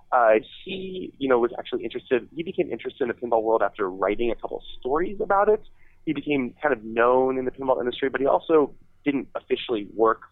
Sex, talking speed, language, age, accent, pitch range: male, 210 wpm, English, 30-49, American, 115-190 Hz